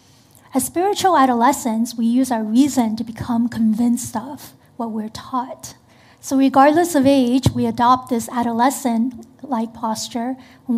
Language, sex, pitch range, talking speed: English, female, 225-260 Hz, 135 wpm